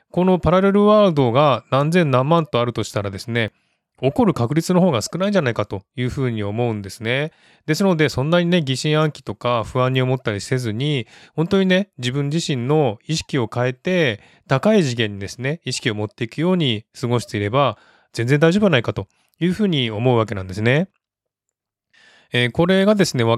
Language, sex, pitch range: Japanese, male, 115-165 Hz